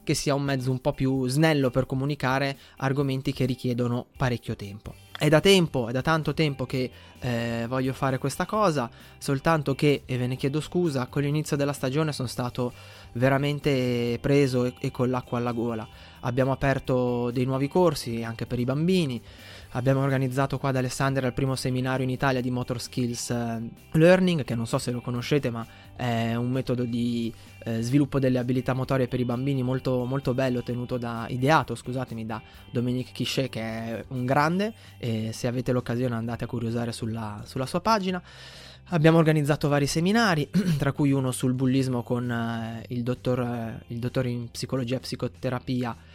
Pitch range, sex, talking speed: 120-140 Hz, male, 175 wpm